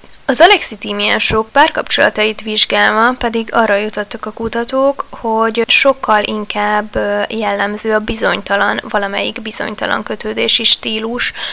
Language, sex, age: Hungarian, female, 20-39